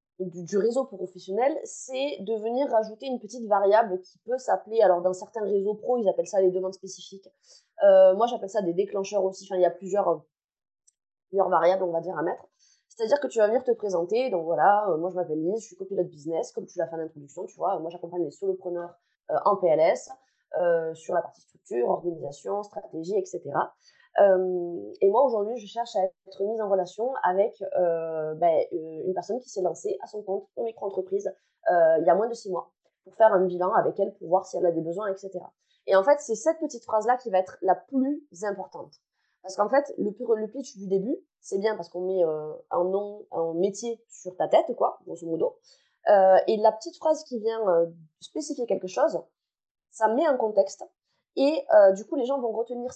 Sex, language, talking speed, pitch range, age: female, French, 220 wpm, 180-235 Hz, 20-39